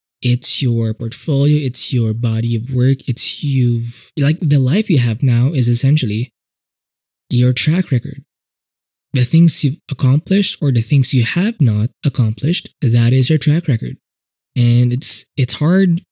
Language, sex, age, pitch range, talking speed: English, male, 20-39, 120-145 Hz, 155 wpm